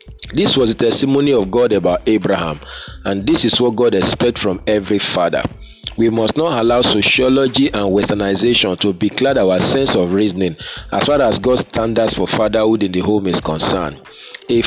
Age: 40-59